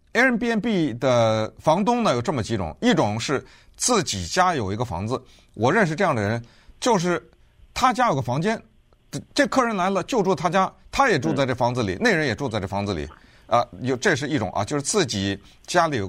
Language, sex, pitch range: Chinese, male, 100-155 Hz